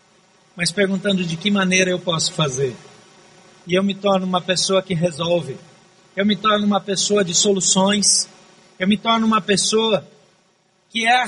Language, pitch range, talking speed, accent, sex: Portuguese, 185-200 Hz, 165 wpm, Brazilian, male